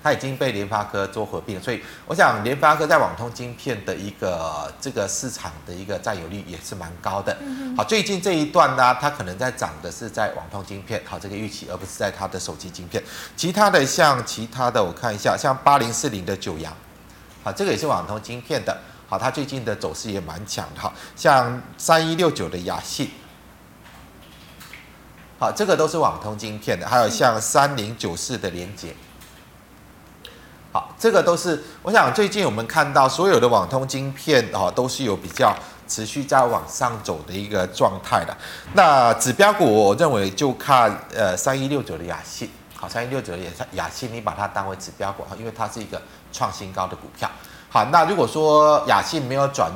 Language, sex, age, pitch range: Chinese, male, 30-49, 95-130 Hz